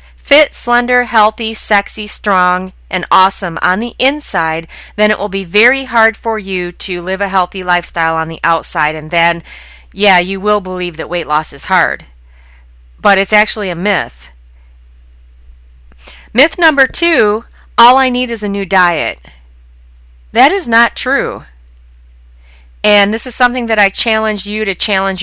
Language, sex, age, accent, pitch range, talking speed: English, female, 30-49, American, 155-235 Hz, 155 wpm